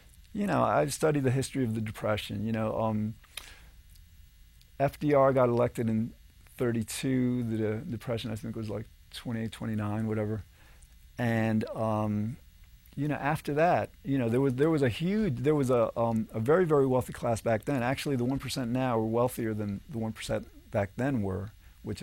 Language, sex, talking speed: English, male, 180 wpm